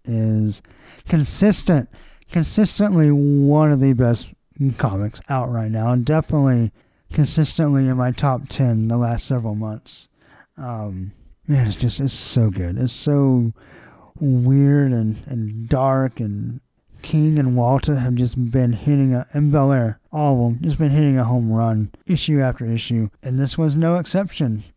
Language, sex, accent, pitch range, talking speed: English, male, American, 125-155 Hz, 155 wpm